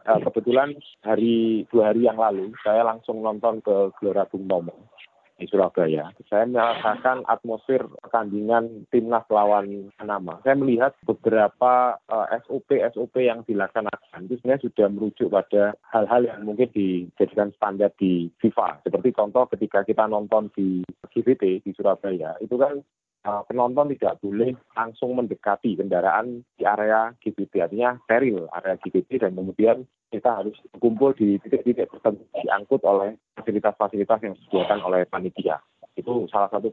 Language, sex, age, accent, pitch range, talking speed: Indonesian, male, 30-49, native, 100-120 Hz, 135 wpm